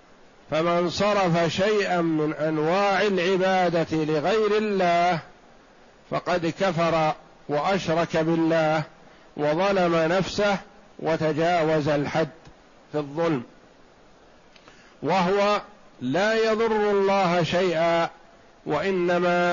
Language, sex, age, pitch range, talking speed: Arabic, male, 50-69, 160-190 Hz, 75 wpm